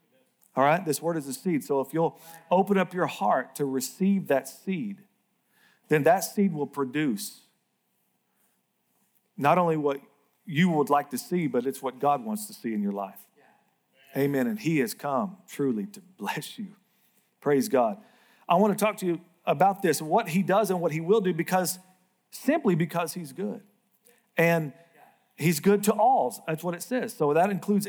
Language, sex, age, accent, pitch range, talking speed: English, male, 50-69, American, 165-220 Hz, 185 wpm